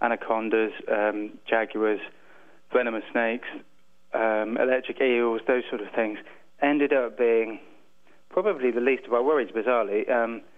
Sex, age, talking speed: male, 20-39, 120 wpm